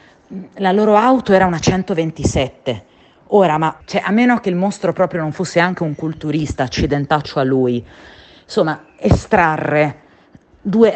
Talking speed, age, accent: 135 wpm, 30-49, native